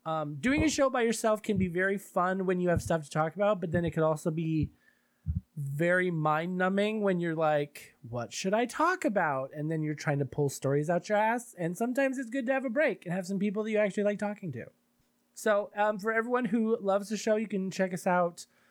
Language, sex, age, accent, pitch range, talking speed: English, male, 20-39, American, 155-215 Hz, 240 wpm